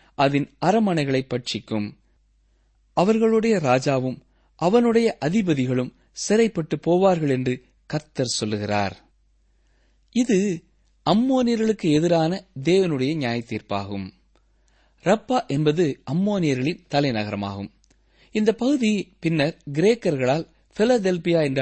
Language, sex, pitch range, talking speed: Tamil, male, 130-190 Hz, 75 wpm